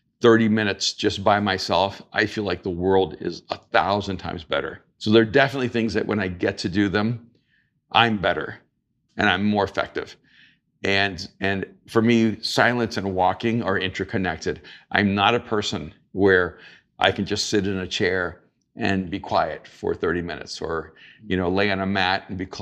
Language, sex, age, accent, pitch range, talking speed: English, male, 50-69, American, 95-115 Hz, 185 wpm